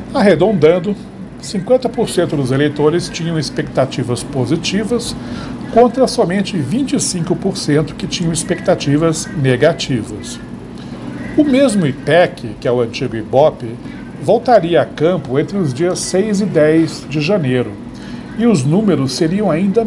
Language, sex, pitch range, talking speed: Portuguese, male, 140-200 Hz, 115 wpm